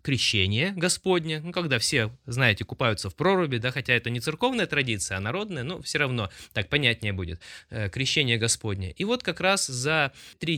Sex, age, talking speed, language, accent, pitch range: male, 20-39, 175 wpm, Russian, native, 115-160 Hz